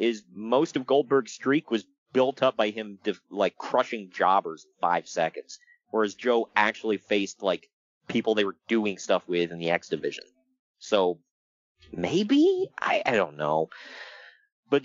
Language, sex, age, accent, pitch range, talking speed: English, male, 30-49, American, 110-170 Hz, 155 wpm